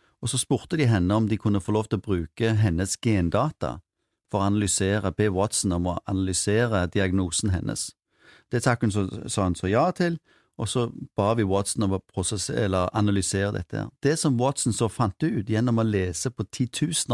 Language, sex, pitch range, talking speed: English, male, 100-125 Hz, 180 wpm